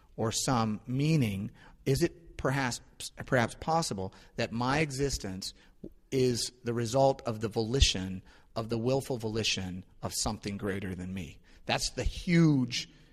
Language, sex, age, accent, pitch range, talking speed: English, male, 30-49, American, 110-145 Hz, 135 wpm